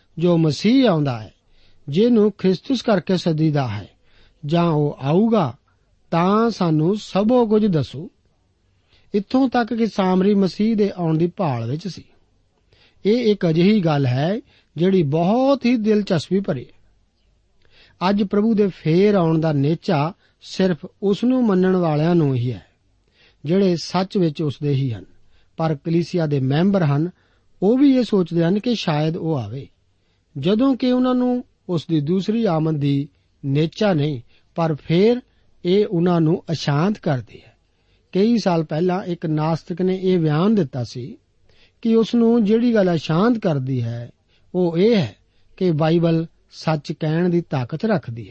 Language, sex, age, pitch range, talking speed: Punjabi, male, 50-69, 135-195 Hz, 150 wpm